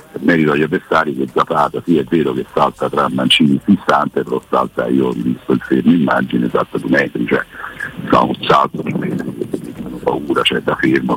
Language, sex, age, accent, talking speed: Italian, male, 60-79, native, 200 wpm